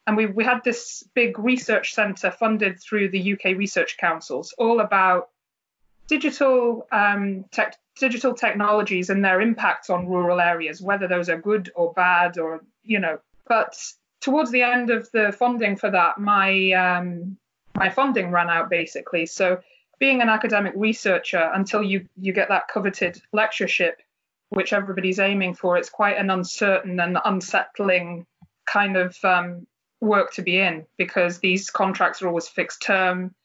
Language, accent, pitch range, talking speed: English, British, 180-210 Hz, 160 wpm